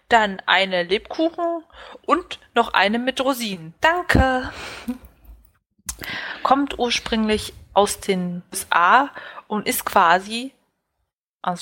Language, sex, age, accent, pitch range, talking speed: German, female, 20-39, German, 180-235 Hz, 95 wpm